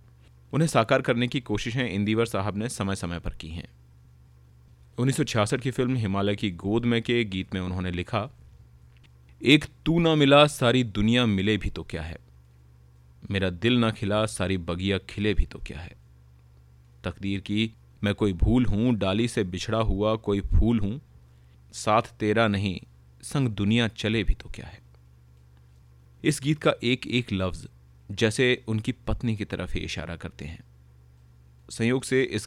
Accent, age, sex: native, 30-49, male